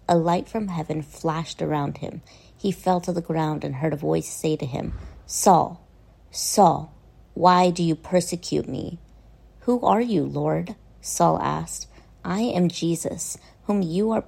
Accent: American